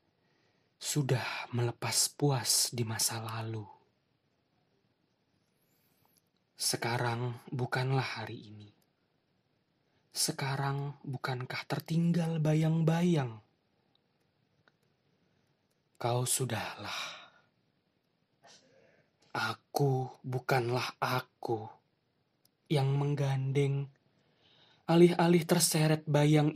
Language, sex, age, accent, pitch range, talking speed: Indonesian, male, 20-39, native, 130-155 Hz, 55 wpm